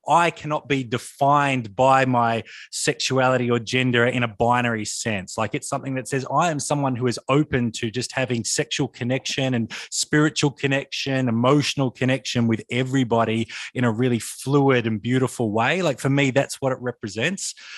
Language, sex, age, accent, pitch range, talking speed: English, male, 20-39, Australian, 120-145 Hz, 170 wpm